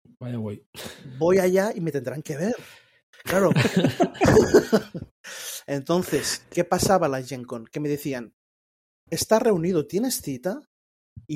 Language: Spanish